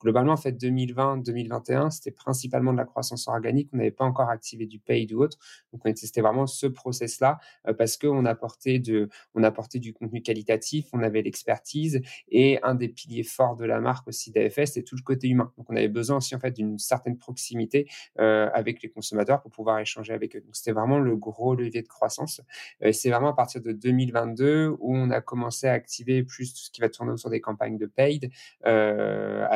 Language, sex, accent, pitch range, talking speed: French, male, French, 110-130 Hz, 210 wpm